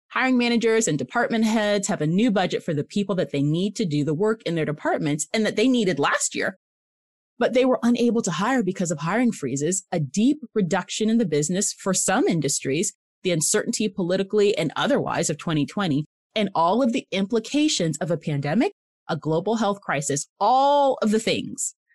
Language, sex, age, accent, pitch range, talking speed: English, female, 30-49, American, 170-240 Hz, 190 wpm